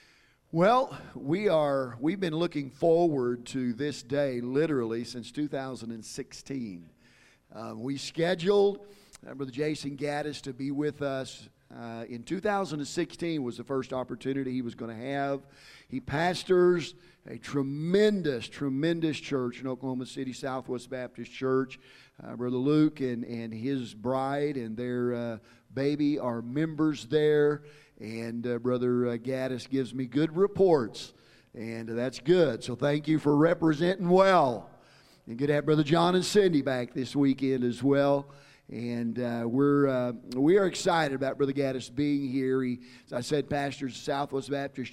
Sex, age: male, 50-69